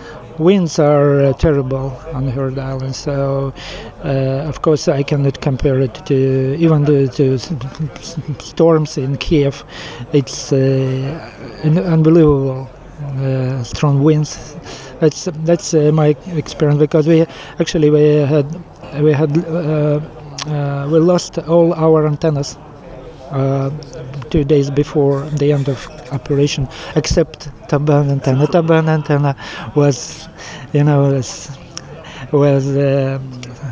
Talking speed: 125 wpm